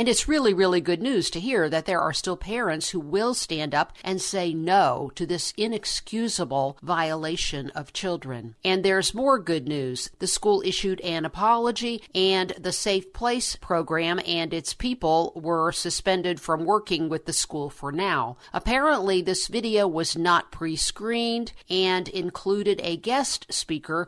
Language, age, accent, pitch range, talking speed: English, 50-69, American, 160-195 Hz, 160 wpm